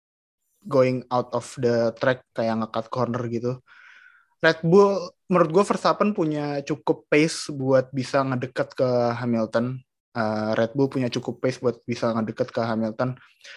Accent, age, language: native, 20-39, Indonesian